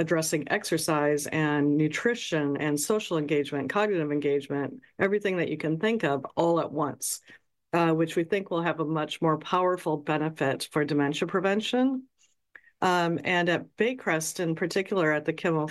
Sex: female